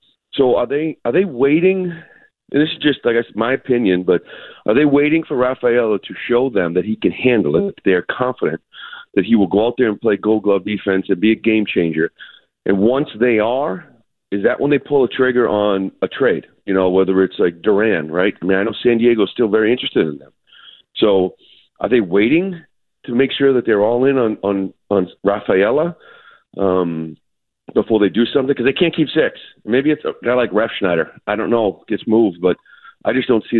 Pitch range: 100-135 Hz